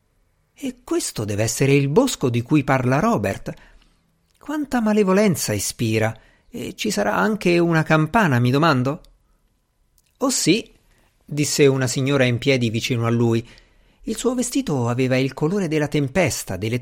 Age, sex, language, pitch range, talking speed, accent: 50-69, male, Italian, 115-180 Hz, 145 wpm, native